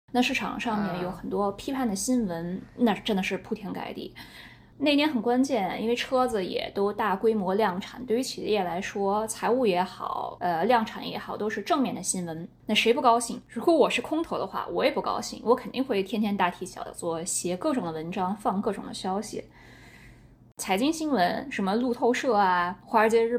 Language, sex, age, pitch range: Chinese, female, 20-39, 200-255 Hz